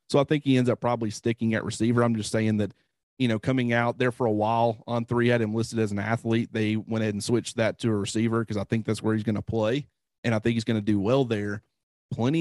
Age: 30-49